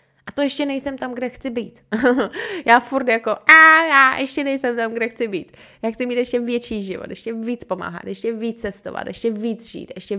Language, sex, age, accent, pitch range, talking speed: Czech, female, 20-39, native, 175-240 Hz, 205 wpm